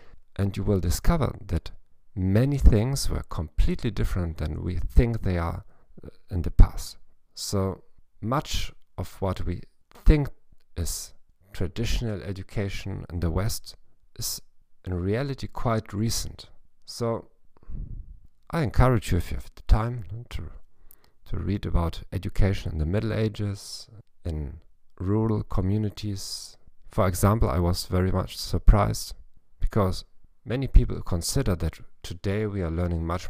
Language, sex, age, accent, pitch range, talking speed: English, male, 50-69, German, 85-110 Hz, 135 wpm